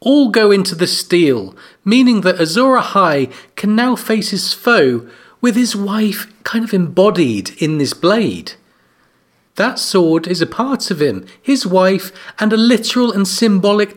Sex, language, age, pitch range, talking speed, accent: male, English, 40-59, 155-215 Hz, 160 wpm, British